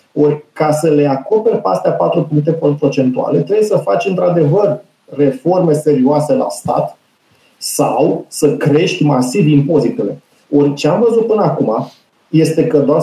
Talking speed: 145 wpm